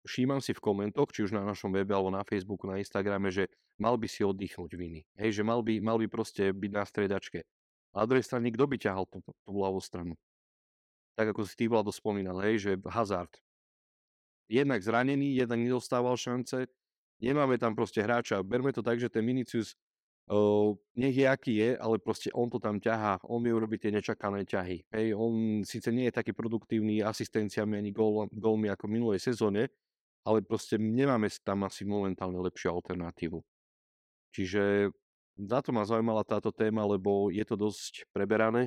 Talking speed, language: 175 wpm, Slovak